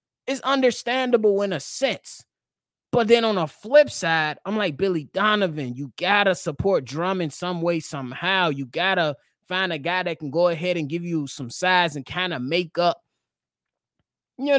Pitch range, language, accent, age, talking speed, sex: 150-190 Hz, English, American, 20-39, 180 wpm, male